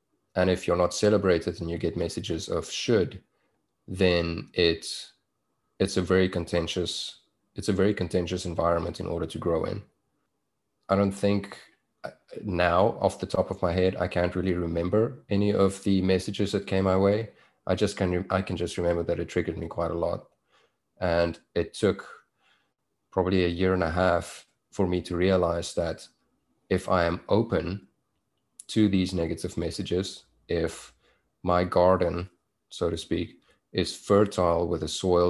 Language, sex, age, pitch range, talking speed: English, male, 30-49, 85-95 Hz, 165 wpm